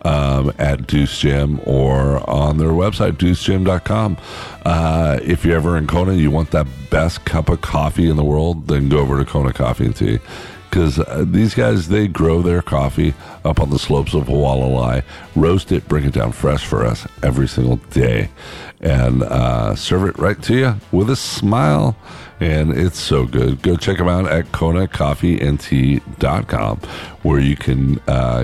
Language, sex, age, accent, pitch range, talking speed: English, male, 50-69, American, 70-90 Hz, 175 wpm